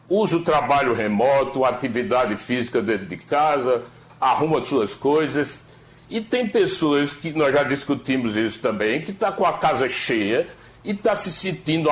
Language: Portuguese